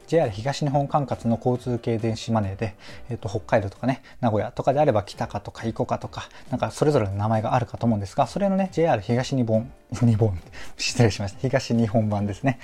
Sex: male